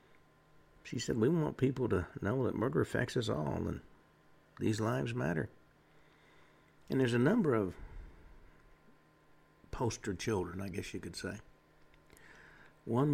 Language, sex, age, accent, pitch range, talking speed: English, male, 60-79, American, 95-120 Hz, 130 wpm